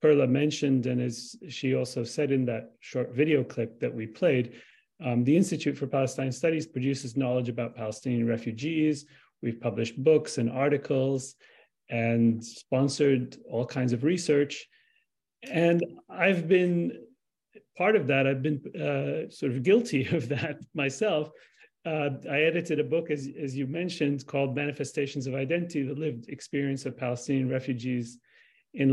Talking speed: 150 wpm